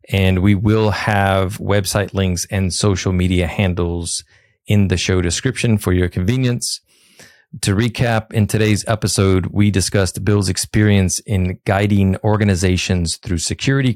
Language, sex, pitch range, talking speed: English, male, 90-110 Hz, 135 wpm